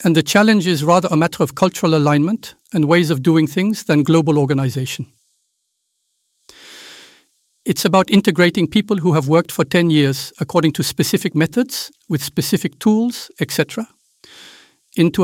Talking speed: 145 wpm